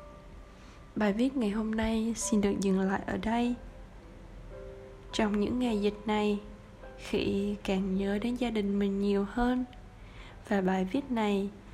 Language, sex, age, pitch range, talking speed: Vietnamese, female, 10-29, 200-235 Hz, 150 wpm